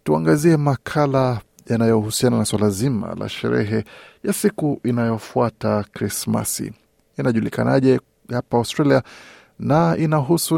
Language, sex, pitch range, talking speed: Swahili, male, 115-140 Hz, 95 wpm